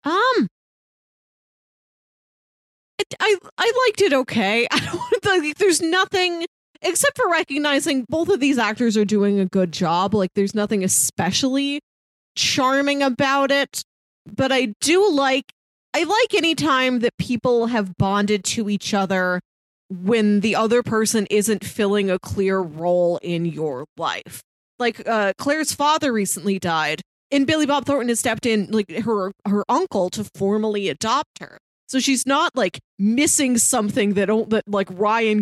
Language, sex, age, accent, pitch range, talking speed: English, female, 20-39, American, 200-275 Hz, 150 wpm